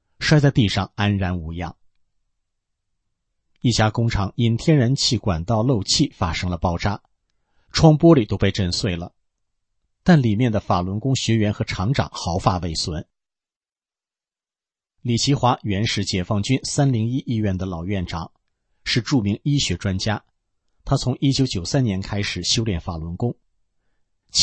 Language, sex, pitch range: English, male, 95-120 Hz